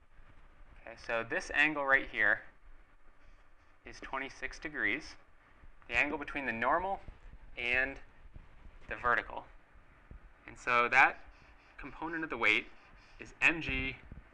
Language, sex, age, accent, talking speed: English, male, 30-49, American, 105 wpm